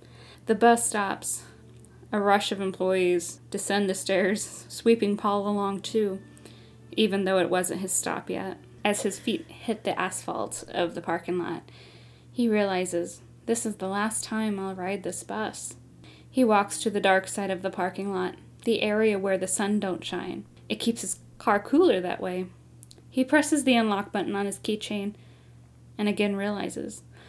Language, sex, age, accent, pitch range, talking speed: English, female, 10-29, American, 180-215 Hz, 170 wpm